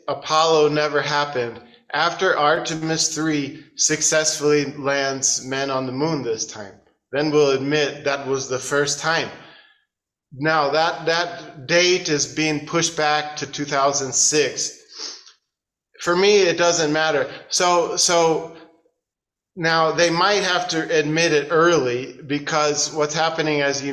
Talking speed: 135 wpm